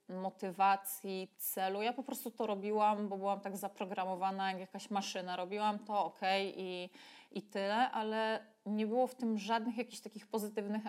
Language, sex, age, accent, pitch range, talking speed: Polish, female, 20-39, native, 195-225 Hz, 165 wpm